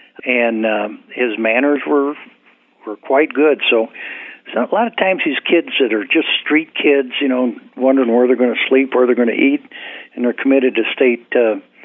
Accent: American